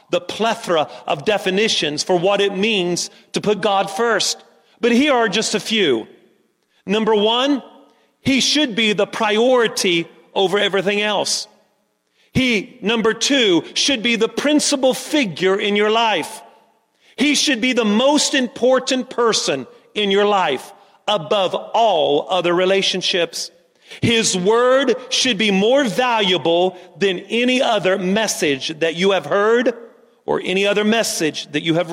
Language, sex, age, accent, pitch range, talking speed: English, male, 40-59, American, 190-240 Hz, 140 wpm